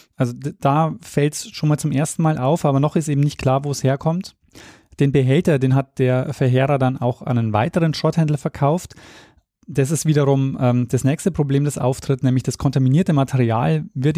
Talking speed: 195 wpm